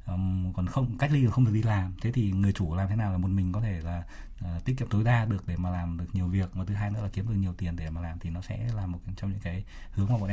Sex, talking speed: male, 330 wpm